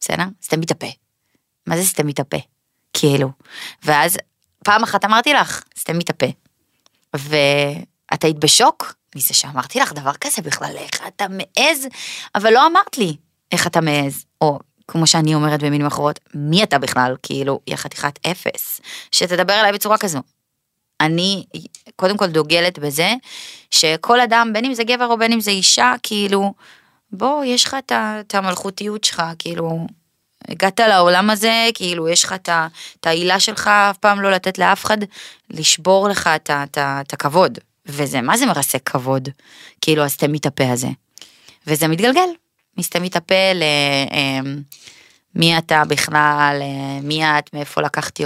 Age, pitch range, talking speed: 20-39, 145-200 Hz, 145 wpm